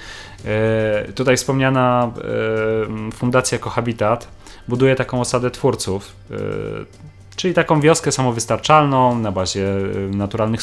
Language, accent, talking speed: Polish, native, 85 wpm